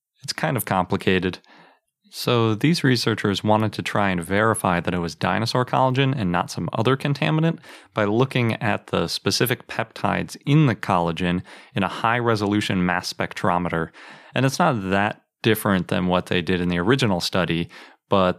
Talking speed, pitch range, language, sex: 165 wpm, 90-115 Hz, English, male